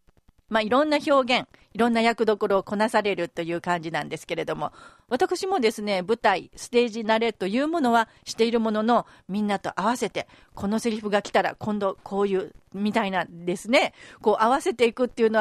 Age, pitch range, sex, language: 40-59, 185-260 Hz, female, Japanese